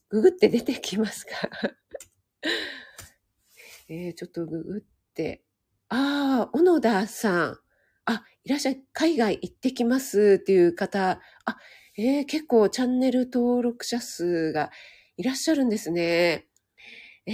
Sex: female